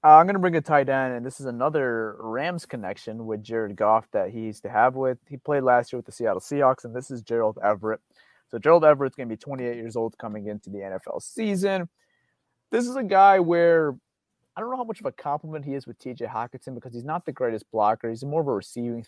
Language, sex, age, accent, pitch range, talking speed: English, male, 30-49, American, 110-140 Hz, 250 wpm